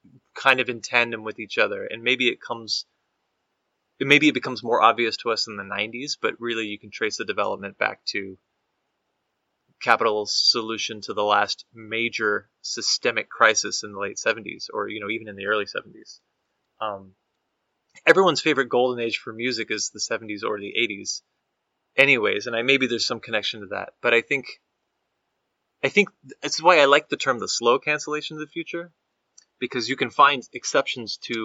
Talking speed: 180 wpm